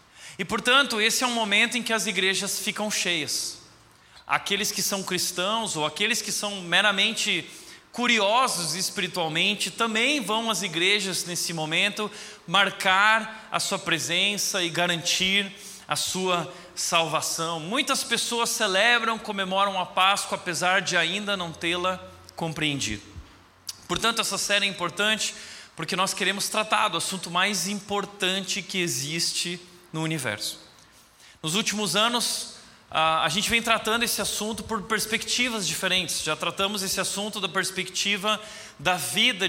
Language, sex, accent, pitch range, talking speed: Portuguese, male, Brazilian, 175-220 Hz, 135 wpm